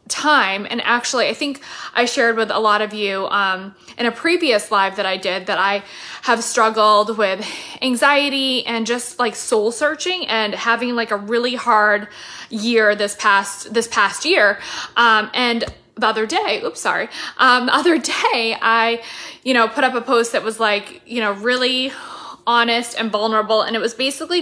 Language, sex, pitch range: English, female, 220-260 Hz